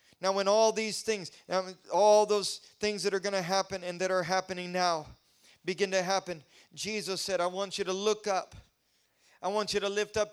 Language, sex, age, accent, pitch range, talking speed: English, male, 40-59, American, 185-210 Hz, 205 wpm